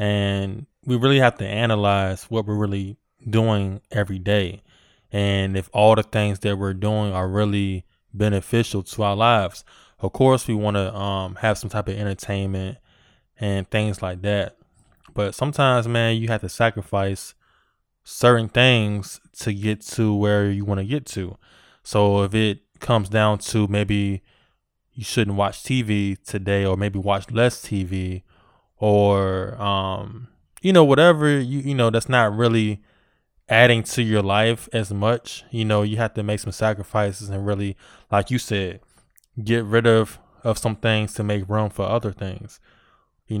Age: 20-39